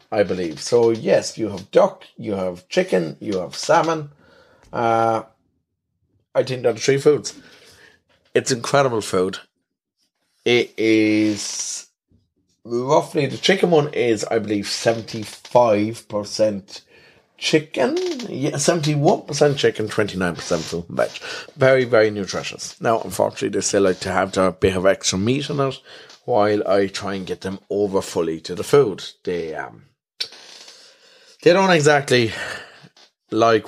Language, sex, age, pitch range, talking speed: English, male, 30-49, 95-135 Hz, 125 wpm